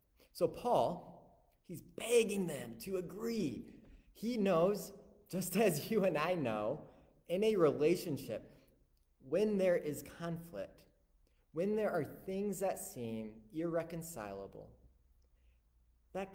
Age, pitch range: 30-49, 145-220 Hz